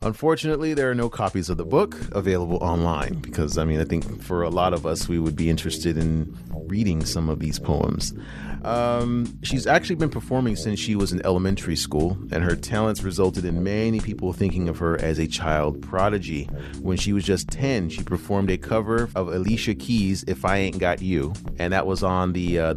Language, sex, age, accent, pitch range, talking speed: English, male, 30-49, American, 80-95 Hz, 205 wpm